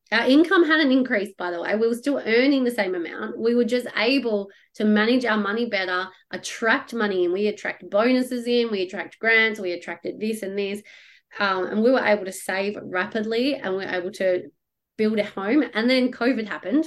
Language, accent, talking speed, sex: English, Australian, 205 wpm, female